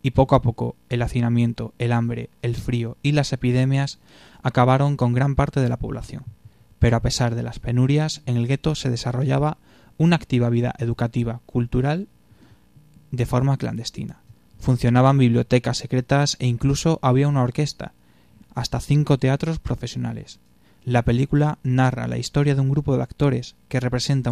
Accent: Spanish